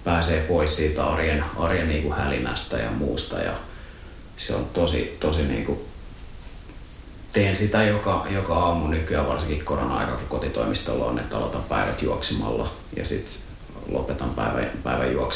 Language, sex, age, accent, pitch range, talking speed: Finnish, male, 30-49, native, 75-100 Hz, 135 wpm